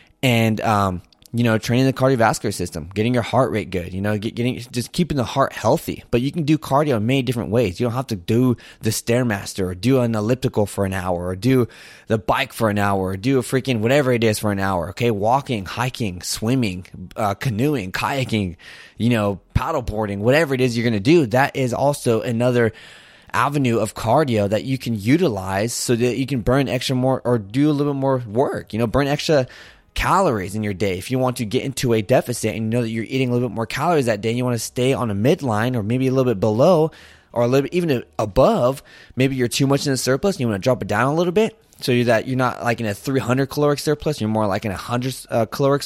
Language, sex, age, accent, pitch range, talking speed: English, male, 20-39, American, 110-135 Hz, 240 wpm